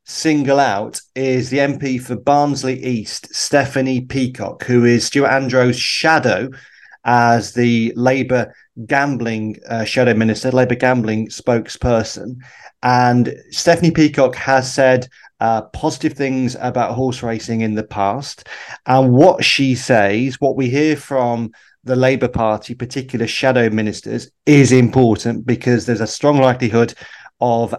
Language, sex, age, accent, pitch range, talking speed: English, male, 30-49, British, 115-130 Hz, 130 wpm